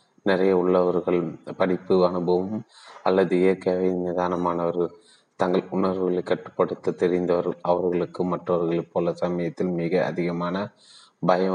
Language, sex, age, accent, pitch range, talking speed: Tamil, male, 30-49, native, 85-90 Hz, 95 wpm